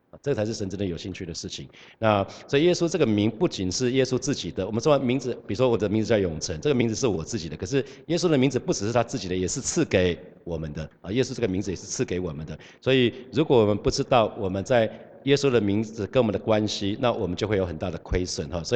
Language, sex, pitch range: Chinese, male, 95-120 Hz